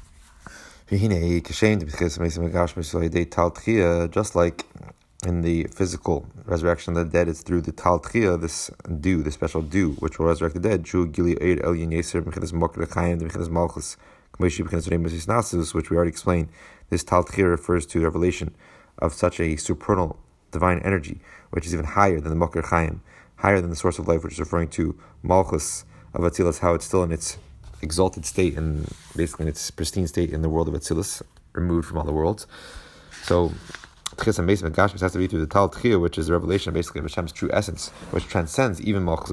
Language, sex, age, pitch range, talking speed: English, male, 30-49, 80-95 Hz, 155 wpm